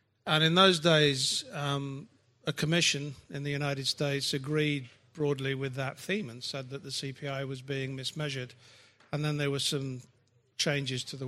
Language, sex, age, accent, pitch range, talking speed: English, male, 50-69, British, 130-155 Hz, 170 wpm